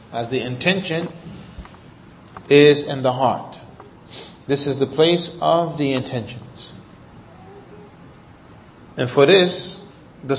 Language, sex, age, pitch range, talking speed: English, male, 30-49, 135-175 Hz, 105 wpm